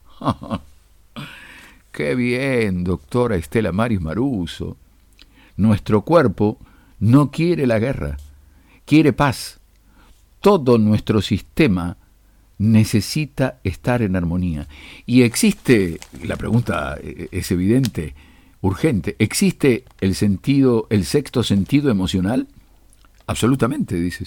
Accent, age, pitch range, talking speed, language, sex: Argentinian, 50-69, 90-125 Hz, 90 wpm, Spanish, male